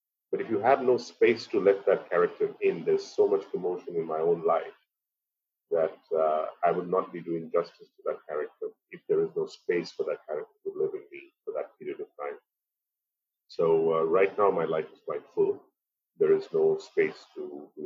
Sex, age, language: male, 40-59, English